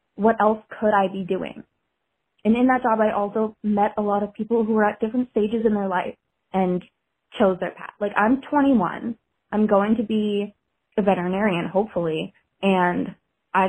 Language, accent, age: English, American, 20-39